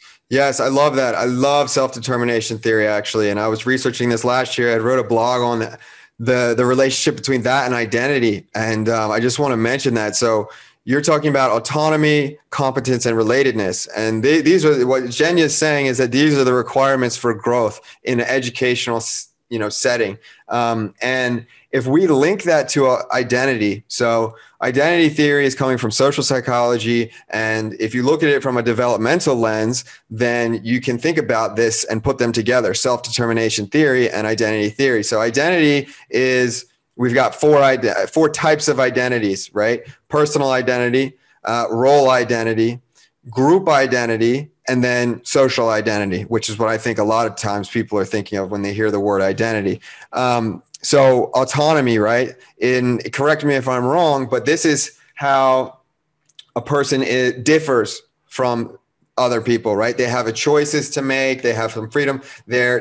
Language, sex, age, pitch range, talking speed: English, male, 30-49, 115-135 Hz, 175 wpm